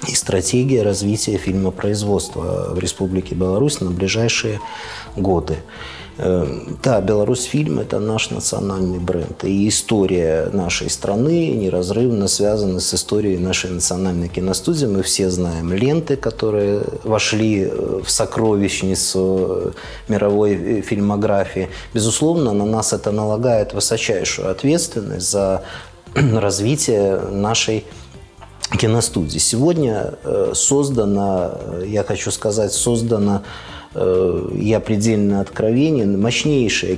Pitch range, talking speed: 95-115 Hz, 95 wpm